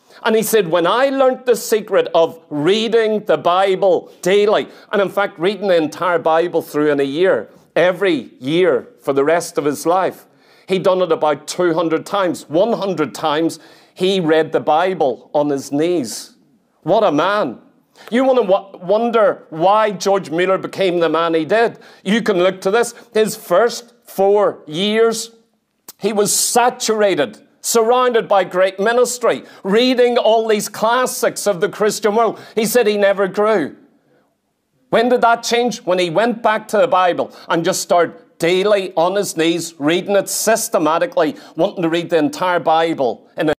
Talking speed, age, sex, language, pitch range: 165 wpm, 40-59, male, English, 170-220 Hz